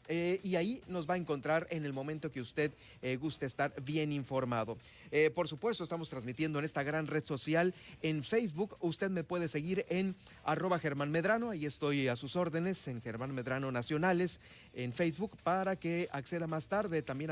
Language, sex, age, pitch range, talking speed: Spanish, male, 40-59, 140-185 Hz, 185 wpm